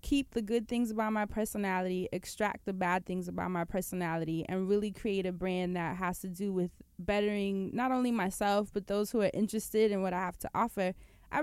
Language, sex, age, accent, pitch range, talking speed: English, female, 20-39, American, 185-235 Hz, 210 wpm